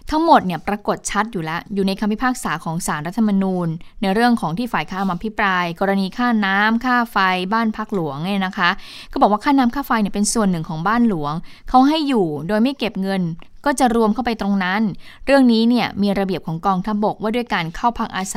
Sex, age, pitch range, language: female, 20-39, 185-235 Hz, Thai